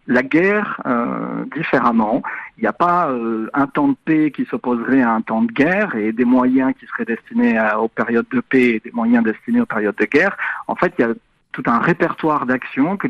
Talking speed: 220 wpm